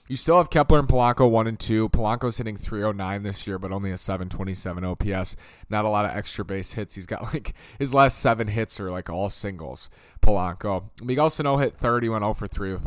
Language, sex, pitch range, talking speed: English, male, 95-115 Hz, 240 wpm